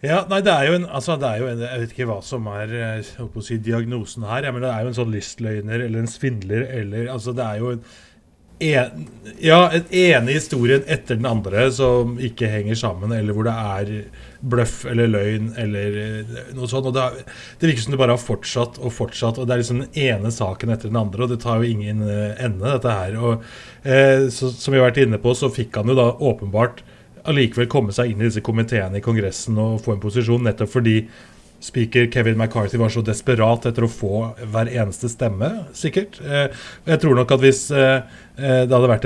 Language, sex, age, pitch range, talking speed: English, male, 30-49, 110-130 Hz, 210 wpm